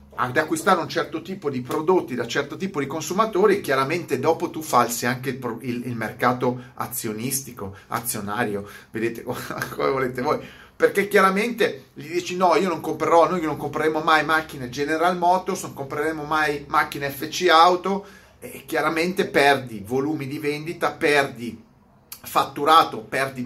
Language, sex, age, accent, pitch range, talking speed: Italian, male, 30-49, native, 120-175 Hz, 145 wpm